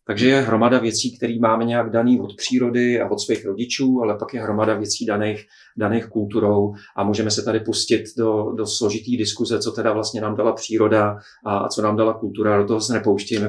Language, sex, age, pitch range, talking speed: Czech, male, 40-59, 105-115 Hz, 210 wpm